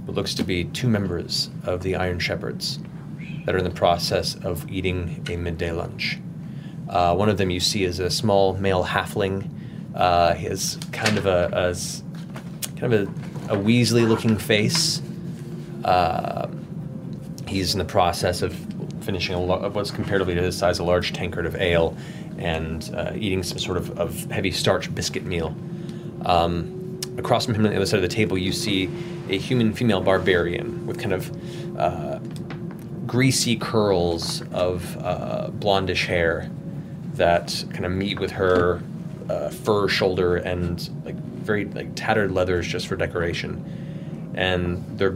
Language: English